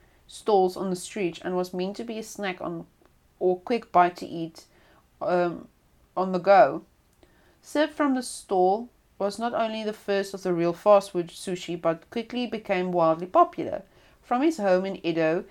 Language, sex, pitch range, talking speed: English, female, 170-220 Hz, 180 wpm